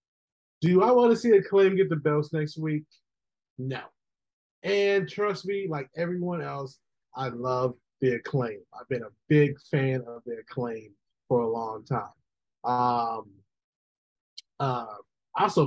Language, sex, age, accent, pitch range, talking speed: English, male, 30-49, American, 125-160 Hz, 140 wpm